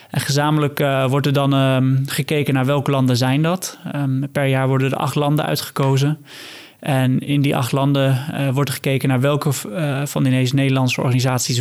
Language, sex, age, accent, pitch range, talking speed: Dutch, male, 20-39, Dutch, 130-145 Hz, 195 wpm